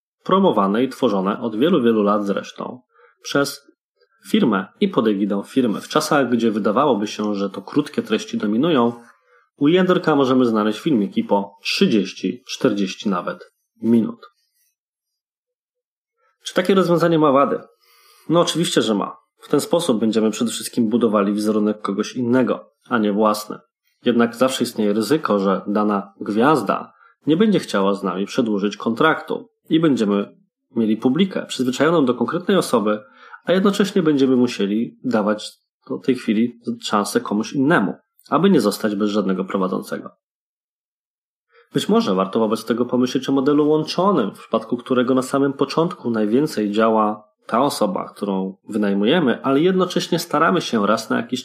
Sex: male